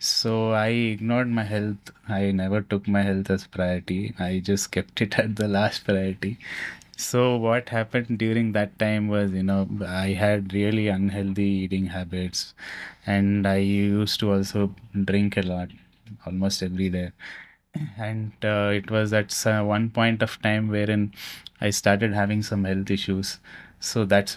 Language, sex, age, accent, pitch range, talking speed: English, male, 20-39, Indian, 95-110 Hz, 160 wpm